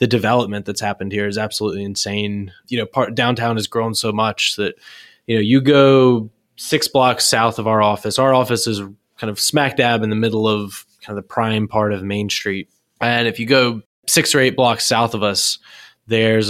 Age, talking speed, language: 20-39, 210 wpm, English